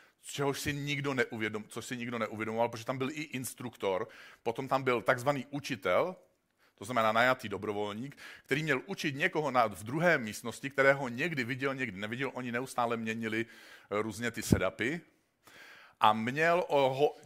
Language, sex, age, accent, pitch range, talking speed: Czech, male, 40-59, native, 120-145 Hz, 145 wpm